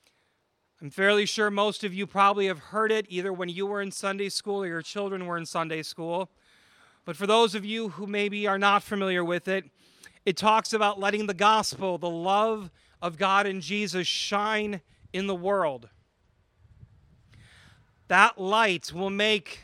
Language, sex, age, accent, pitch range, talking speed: English, male, 40-59, American, 165-220 Hz, 170 wpm